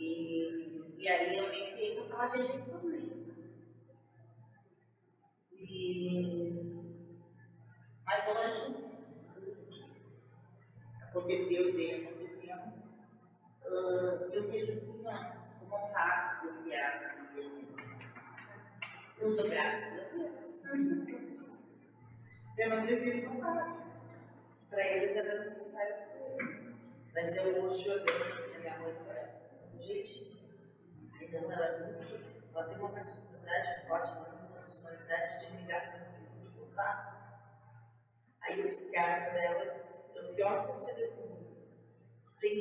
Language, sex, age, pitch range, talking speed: Portuguese, female, 30-49, 165-235 Hz, 110 wpm